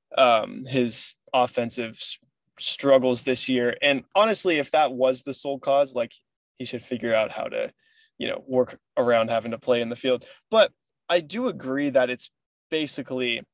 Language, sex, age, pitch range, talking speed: English, male, 20-39, 120-140 Hz, 170 wpm